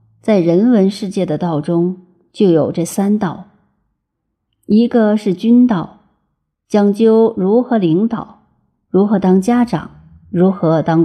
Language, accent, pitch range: Chinese, native, 175-225 Hz